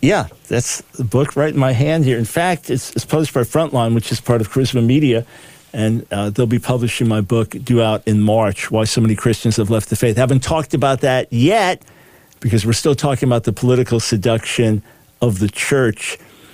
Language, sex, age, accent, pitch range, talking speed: English, male, 50-69, American, 115-140 Hz, 210 wpm